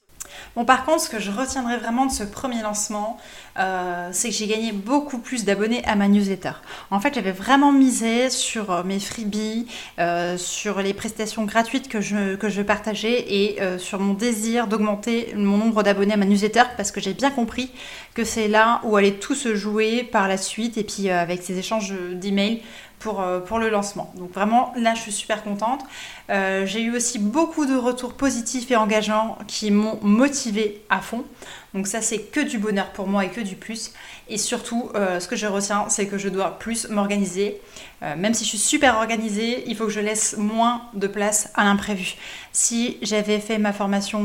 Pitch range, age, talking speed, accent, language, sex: 200-235 Hz, 20-39, 200 wpm, French, French, female